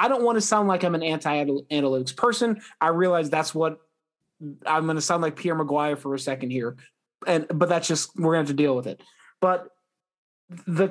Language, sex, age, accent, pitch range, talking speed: English, male, 30-49, American, 145-175 Hz, 220 wpm